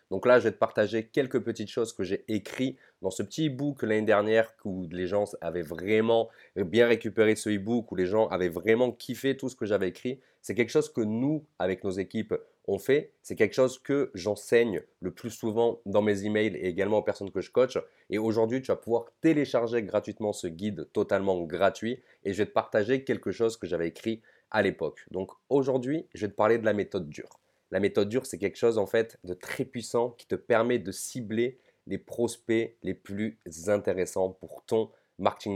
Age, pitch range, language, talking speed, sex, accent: 30-49, 105-130 Hz, French, 210 wpm, male, French